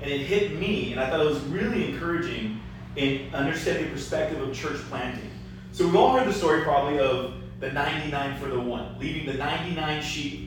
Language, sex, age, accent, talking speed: English, male, 30-49, American, 200 wpm